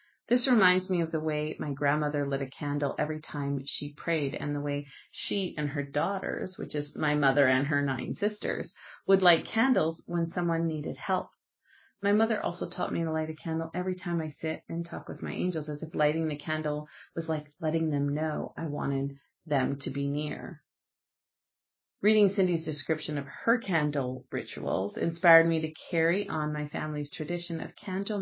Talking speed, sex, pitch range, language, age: 185 wpm, female, 145-180 Hz, English, 30-49